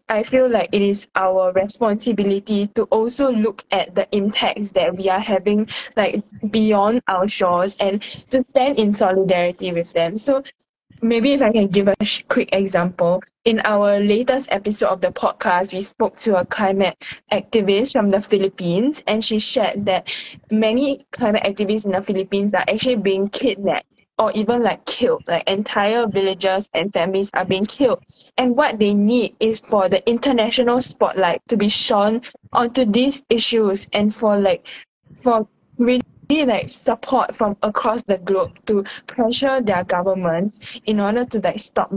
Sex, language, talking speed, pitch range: female, English, 165 wpm, 190-230 Hz